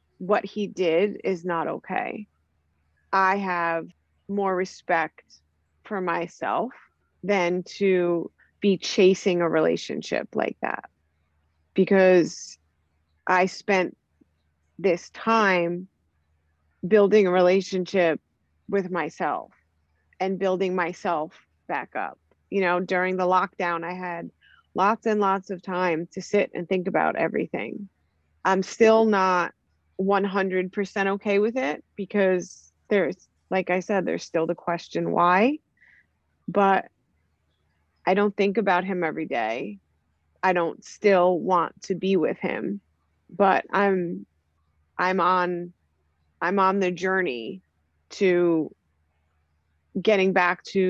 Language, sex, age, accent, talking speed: English, female, 30-49, American, 115 wpm